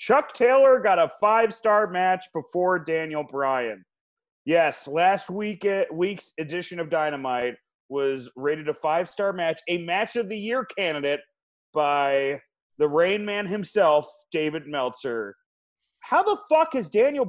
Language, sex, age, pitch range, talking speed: English, male, 30-49, 155-240 Hz, 140 wpm